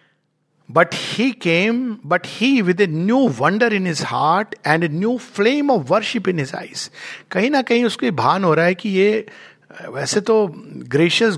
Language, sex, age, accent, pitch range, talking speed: Hindi, male, 60-79, native, 160-230 Hz, 180 wpm